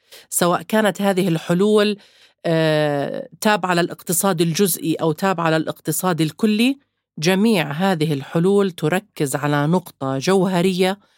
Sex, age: female, 40-59